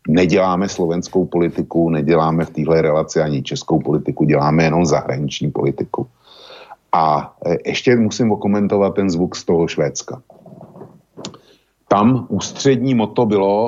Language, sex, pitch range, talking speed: Slovak, male, 75-100 Hz, 120 wpm